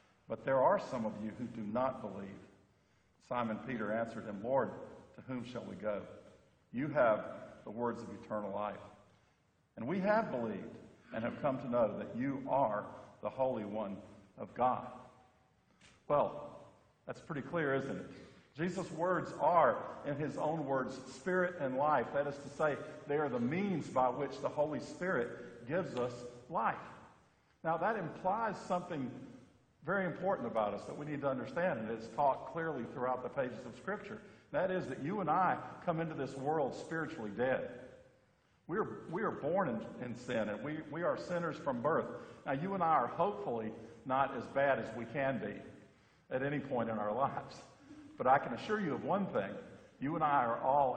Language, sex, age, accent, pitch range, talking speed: English, male, 50-69, American, 110-150 Hz, 185 wpm